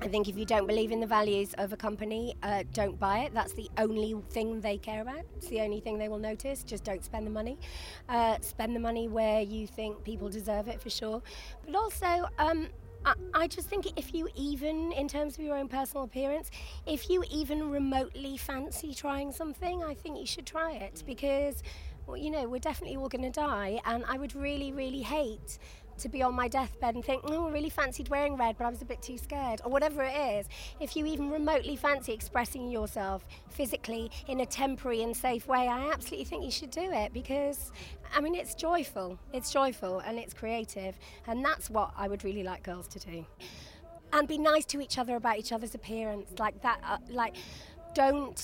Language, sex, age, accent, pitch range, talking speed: English, female, 20-39, British, 220-290 Hz, 210 wpm